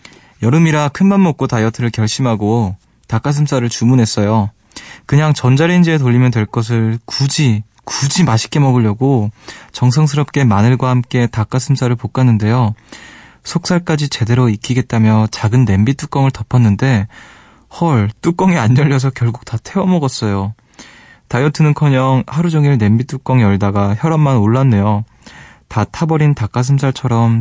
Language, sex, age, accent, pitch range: Korean, male, 20-39, native, 110-145 Hz